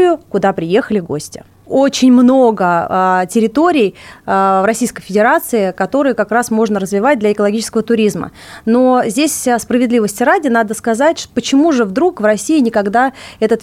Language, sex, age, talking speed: Russian, female, 30-49, 130 wpm